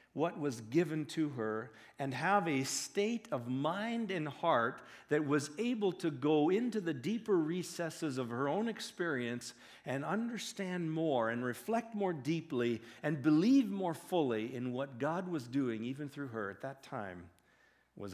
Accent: American